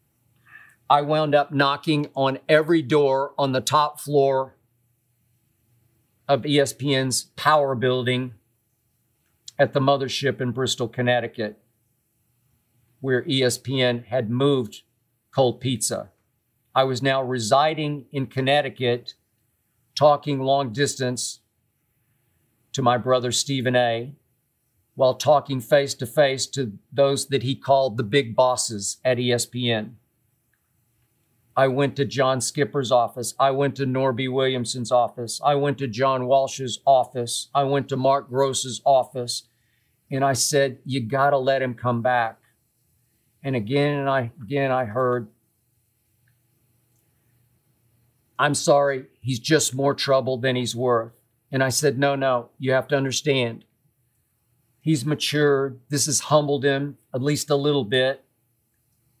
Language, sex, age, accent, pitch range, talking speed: English, male, 50-69, American, 120-140 Hz, 125 wpm